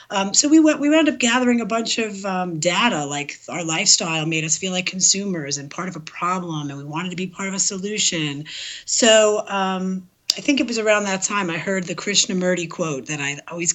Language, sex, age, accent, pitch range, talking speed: English, female, 30-49, American, 160-215 Hz, 225 wpm